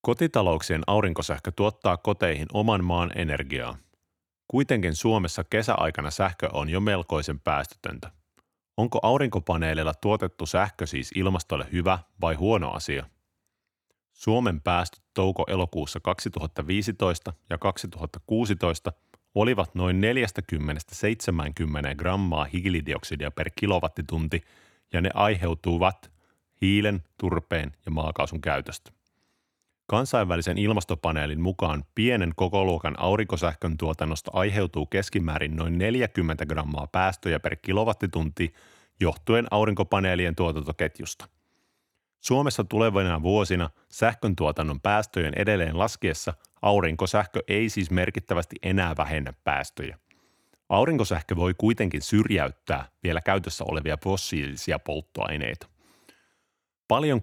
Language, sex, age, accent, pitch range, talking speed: Finnish, male, 30-49, native, 80-100 Hz, 95 wpm